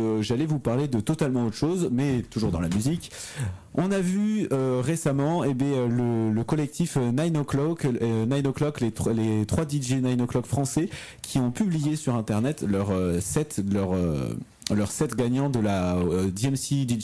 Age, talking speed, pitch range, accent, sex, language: 30-49, 185 wpm, 110-140 Hz, French, male, French